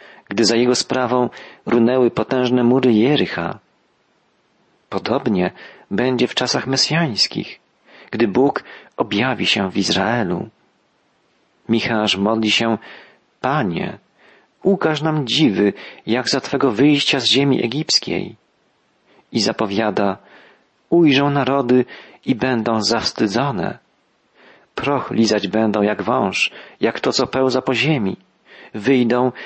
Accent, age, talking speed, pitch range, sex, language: native, 40-59, 105 wpm, 115-140 Hz, male, Polish